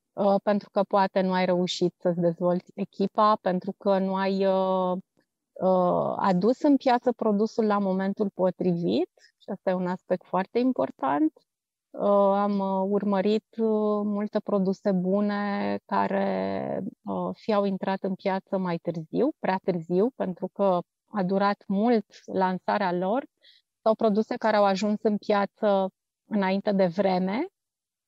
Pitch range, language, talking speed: 185-220 Hz, Romanian, 125 wpm